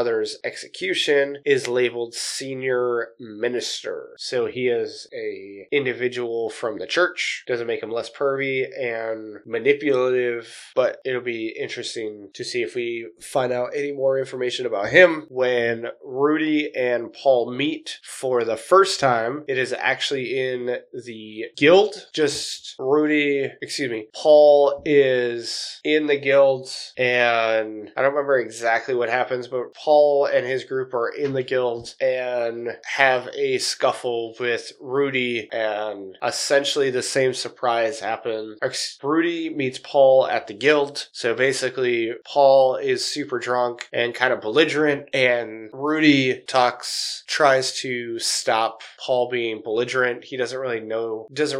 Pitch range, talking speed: 120-145 Hz, 135 wpm